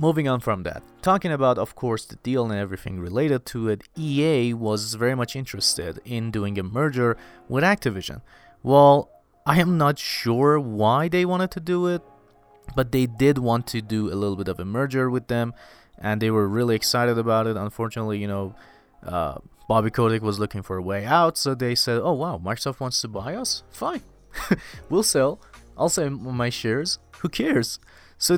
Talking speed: 190 wpm